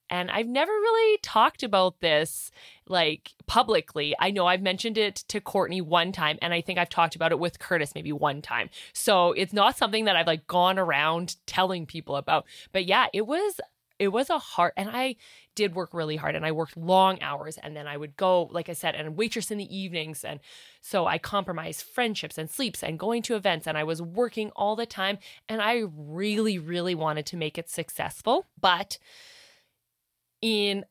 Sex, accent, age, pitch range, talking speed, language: female, American, 20-39, 165-215 Hz, 200 wpm, English